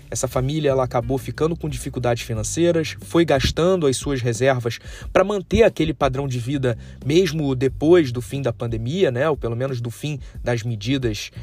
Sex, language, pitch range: male, Portuguese, 120-160 Hz